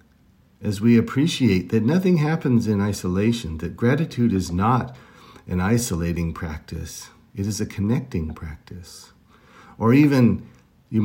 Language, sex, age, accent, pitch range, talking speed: English, male, 50-69, American, 95-120 Hz, 125 wpm